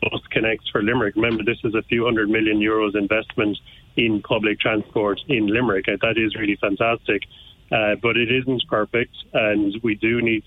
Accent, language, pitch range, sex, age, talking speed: Irish, English, 105-120 Hz, male, 30-49, 180 wpm